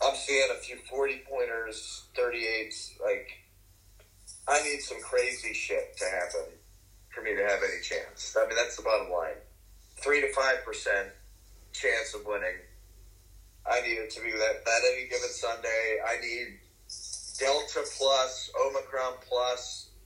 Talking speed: 145 wpm